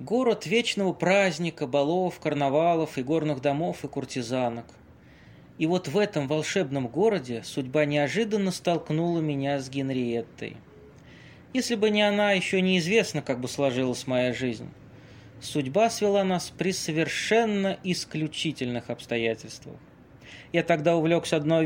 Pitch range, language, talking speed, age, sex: 135-185 Hz, Russian, 120 wpm, 20-39, male